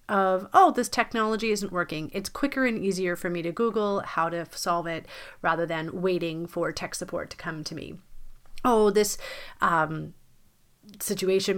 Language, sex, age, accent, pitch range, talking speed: English, female, 30-49, American, 170-220 Hz, 165 wpm